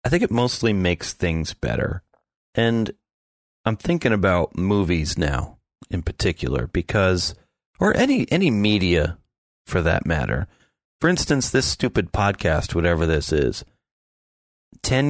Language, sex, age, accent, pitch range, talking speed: English, male, 40-59, American, 85-115 Hz, 125 wpm